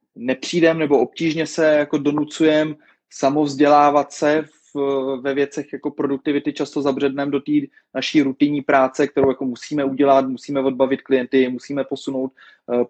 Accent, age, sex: native, 20-39, male